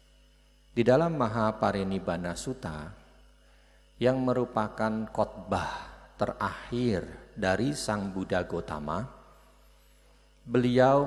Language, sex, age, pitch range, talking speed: Indonesian, male, 50-69, 80-120 Hz, 70 wpm